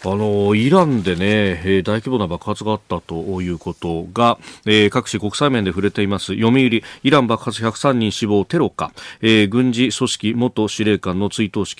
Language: Japanese